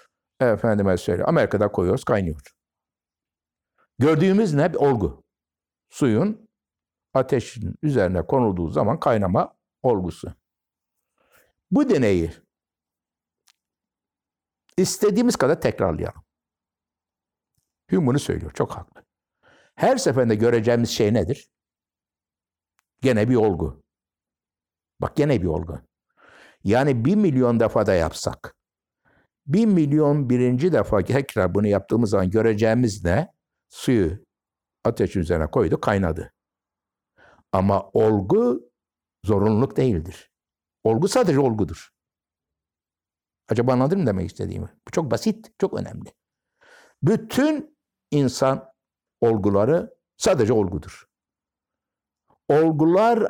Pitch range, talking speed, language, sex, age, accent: 85-140 Hz, 90 wpm, Turkish, male, 60-79, native